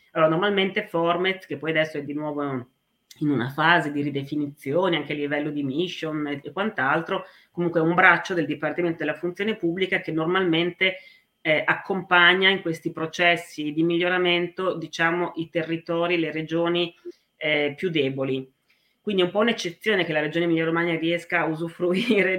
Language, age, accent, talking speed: Italian, 30-49, native, 160 wpm